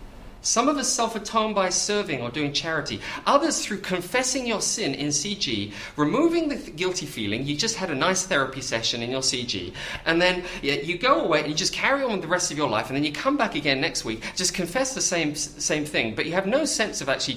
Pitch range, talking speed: 105-170 Hz, 230 wpm